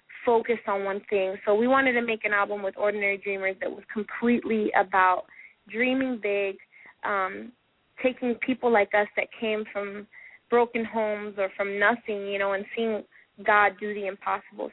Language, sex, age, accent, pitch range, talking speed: English, female, 20-39, American, 195-225 Hz, 165 wpm